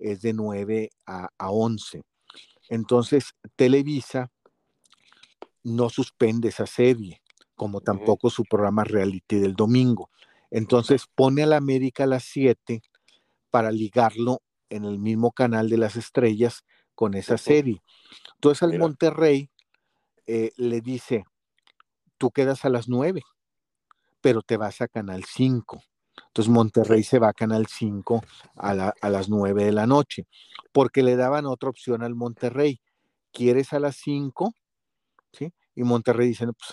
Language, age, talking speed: Spanish, 50-69, 140 wpm